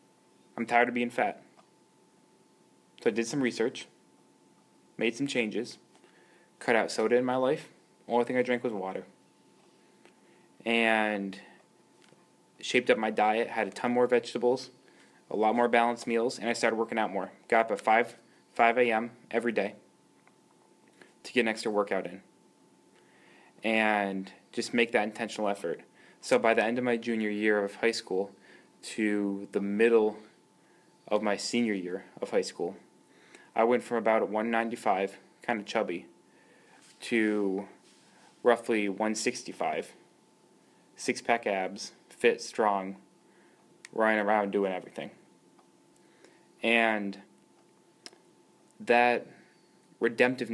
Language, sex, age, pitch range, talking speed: English, male, 20-39, 100-120 Hz, 130 wpm